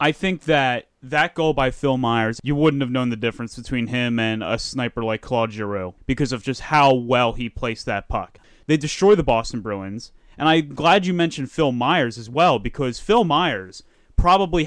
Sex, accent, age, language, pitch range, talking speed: male, American, 30-49, English, 130-175 Hz, 200 wpm